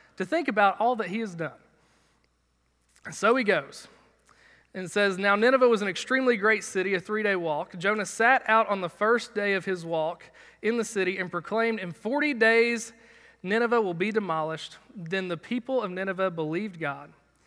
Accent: American